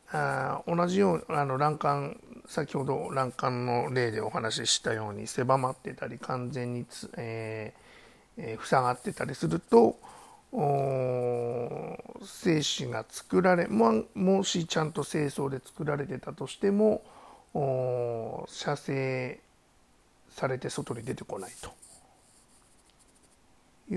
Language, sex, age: Japanese, male, 60-79